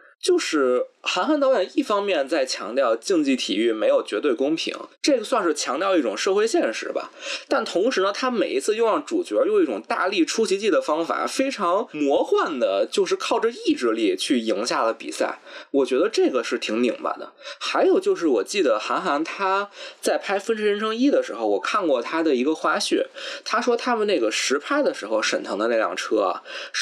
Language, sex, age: Chinese, male, 20-39